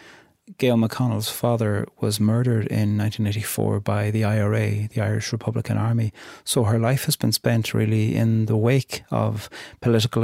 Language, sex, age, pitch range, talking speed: English, male, 30-49, 105-120 Hz, 160 wpm